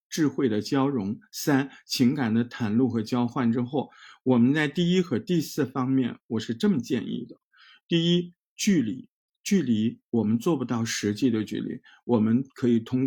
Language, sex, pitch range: Chinese, male, 115-150 Hz